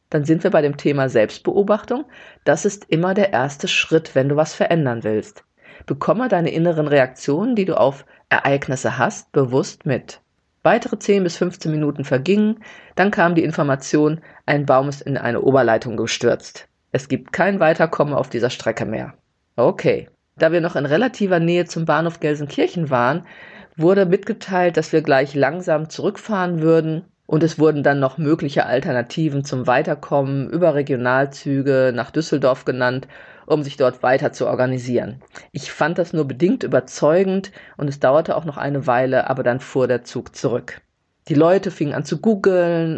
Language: German